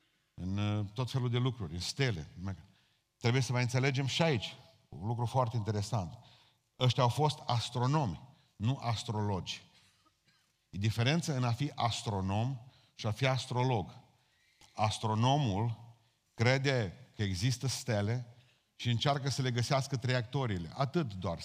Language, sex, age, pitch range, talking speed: Romanian, male, 40-59, 115-140 Hz, 130 wpm